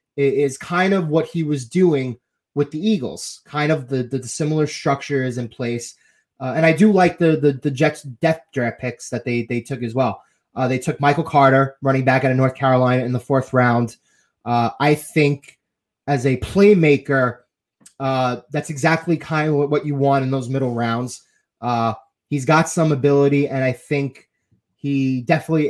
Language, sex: English, male